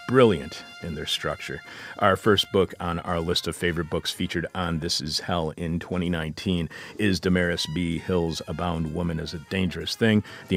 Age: 40-59